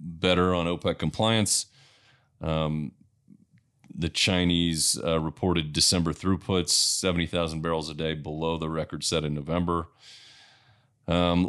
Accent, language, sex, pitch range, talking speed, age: American, English, male, 75-90 Hz, 115 wpm, 30-49